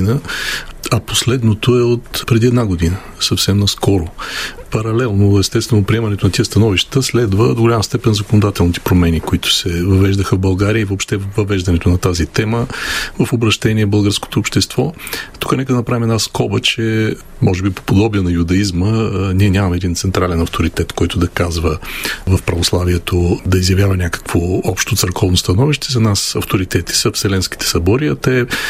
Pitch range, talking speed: 95-110 Hz, 155 wpm